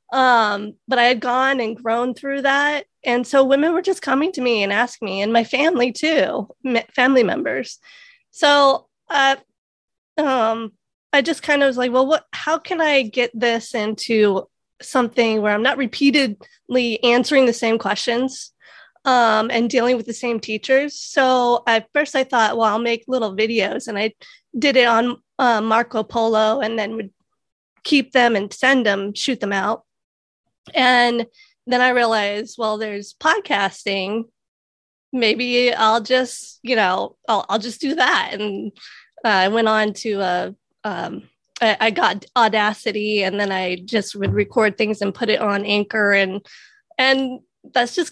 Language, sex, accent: English, female, American